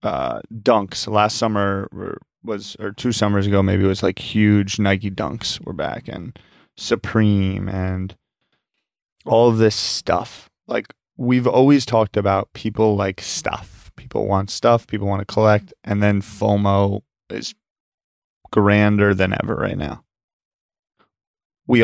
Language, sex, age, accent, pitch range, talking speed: English, male, 20-39, American, 100-115 Hz, 135 wpm